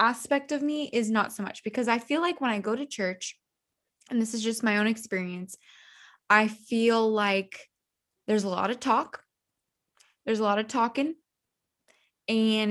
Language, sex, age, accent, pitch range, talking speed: English, female, 20-39, American, 205-255 Hz, 175 wpm